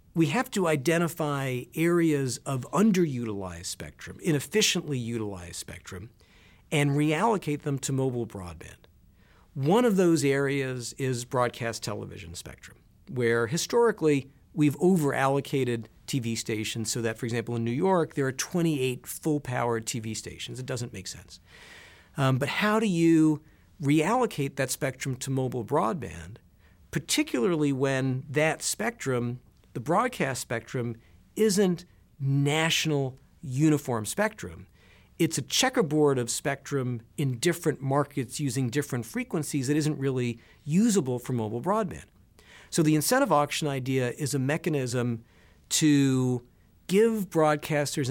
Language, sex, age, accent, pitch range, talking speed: English, male, 50-69, American, 120-155 Hz, 125 wpm